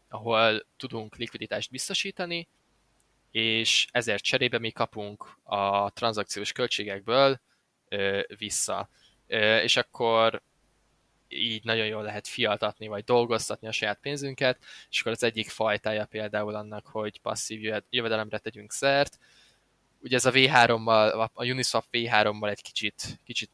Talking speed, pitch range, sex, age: 120 wpm, 105-120 Hz, male, 10-29